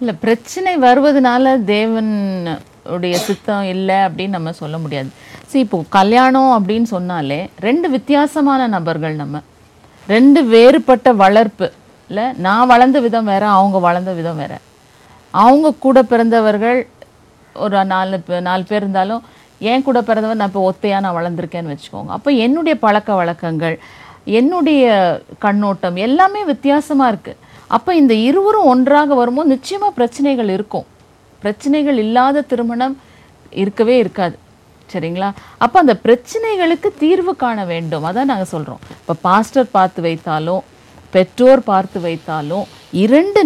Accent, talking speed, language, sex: native, 120 wpm, Tamil, female